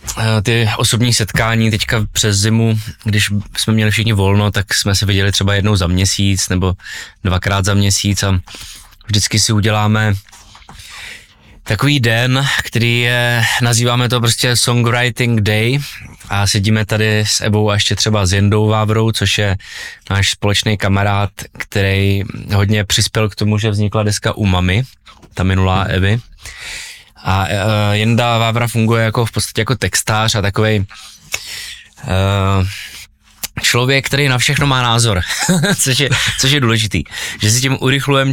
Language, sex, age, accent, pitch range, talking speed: Czech, male, 20-39, native, 100-120 Hz, 145 wpm